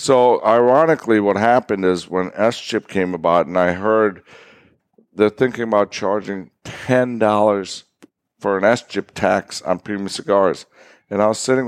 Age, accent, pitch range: 60-79, American, 100-120 Hz